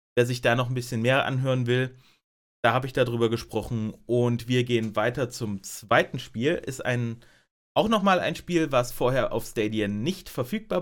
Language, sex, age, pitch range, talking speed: German, male, 30-49, 115-155 Hz, 185 wpm